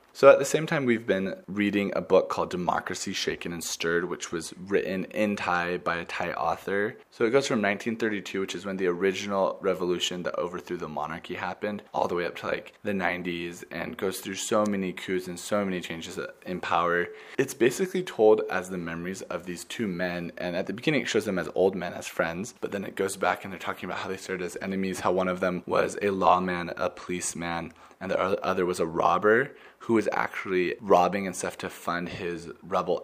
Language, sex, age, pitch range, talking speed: English, male, 20-39, 90-105 Hz, 220 wpm